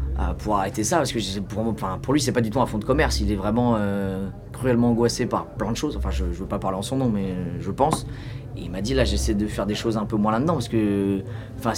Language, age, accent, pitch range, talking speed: French, 20-39, French, 105-135 Hz, 285 wpm